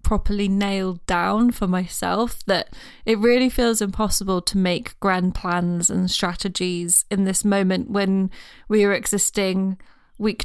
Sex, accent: female, British